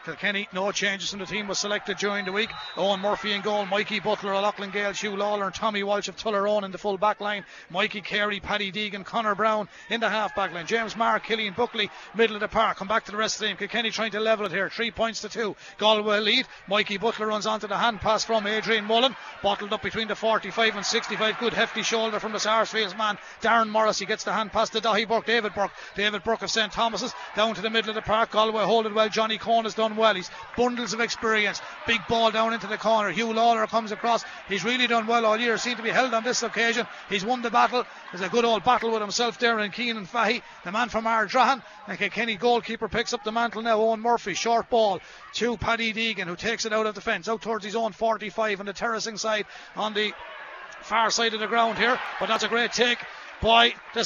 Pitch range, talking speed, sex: 210-230 Hz, 245 wpm, male